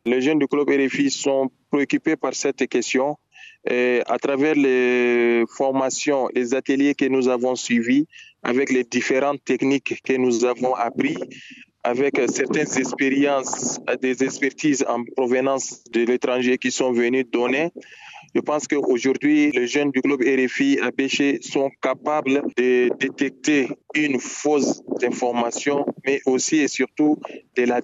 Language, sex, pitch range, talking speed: French, male, 130-150 Hz, 140 wpm